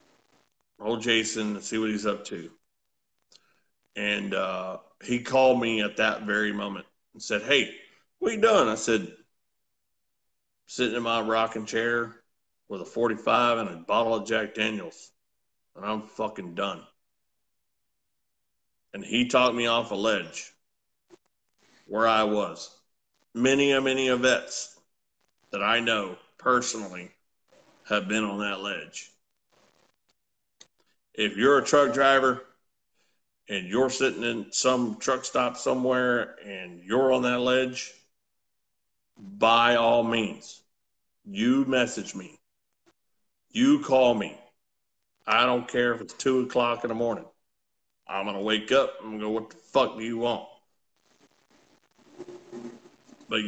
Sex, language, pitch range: male, English, 110-130 Hz